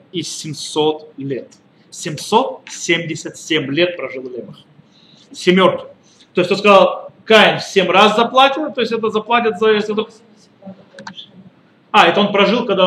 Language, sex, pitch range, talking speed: Russian, male, 170-220 Hz, 120 wpm